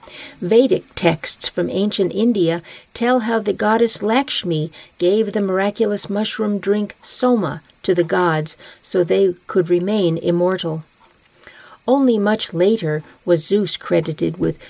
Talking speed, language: 125 wpm, English